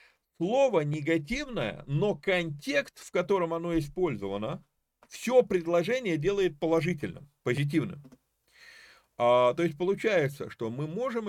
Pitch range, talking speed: 130-180 Hz, 100 wpm